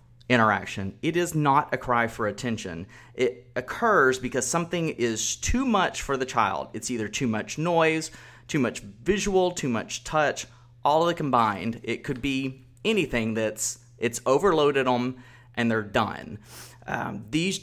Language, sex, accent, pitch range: English, male, American, 115-145 Hz